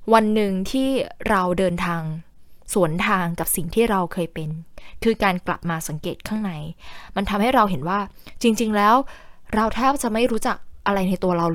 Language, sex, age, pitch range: Thai, female, 10-29, 175-230 Hz